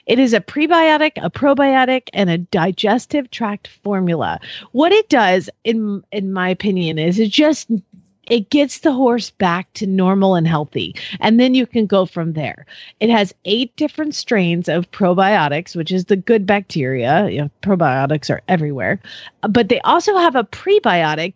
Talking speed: 170 wpm